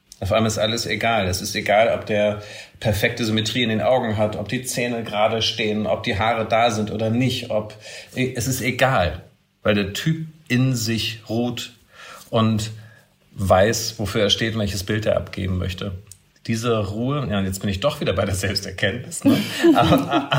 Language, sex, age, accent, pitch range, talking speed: German, male, 50-69, German, 100-125 Hz, 180 wpm